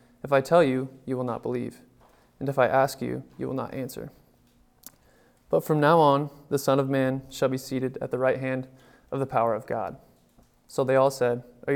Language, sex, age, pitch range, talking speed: English, male, 20-39, 125-145 Hz, 215 wpm